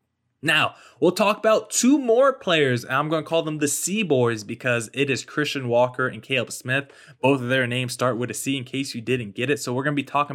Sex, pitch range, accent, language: male, 125-165 Hz, American, English